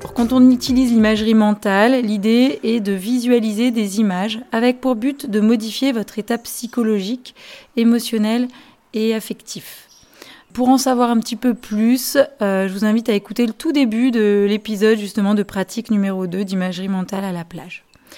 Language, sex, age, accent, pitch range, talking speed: French, female, 30-49, French, 205-250 Hz, 165 wpm